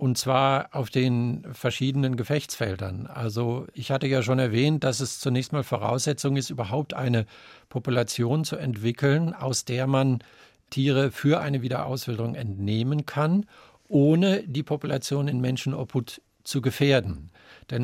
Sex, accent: male, German